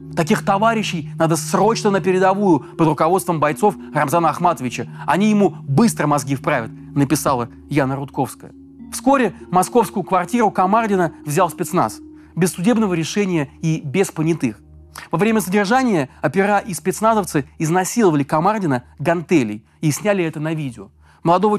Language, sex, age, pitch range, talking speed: Russian, male, 30-49, 150-200 Hz, 130 wpm